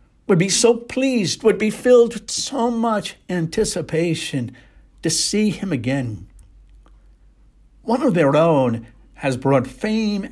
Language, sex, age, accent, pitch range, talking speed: English, male, 60-79, American, 130-195 Hz, 130 wpm